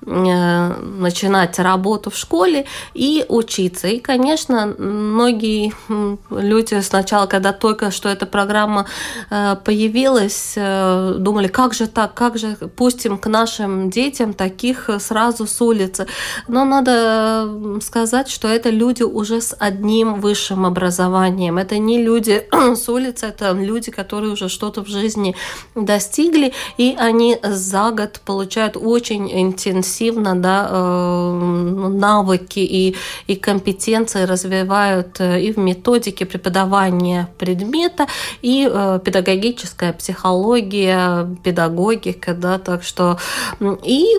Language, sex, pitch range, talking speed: Russian, female, 185-225 Hz, 105 wpm